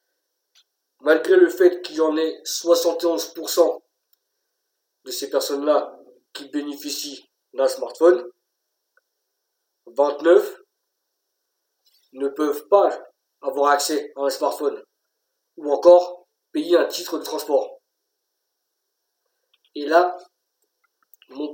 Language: French